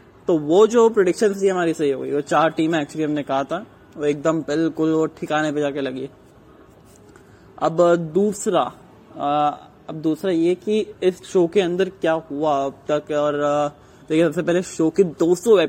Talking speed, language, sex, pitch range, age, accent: 165 wpm, English, male, 145-170 Hz, 20-39, Indian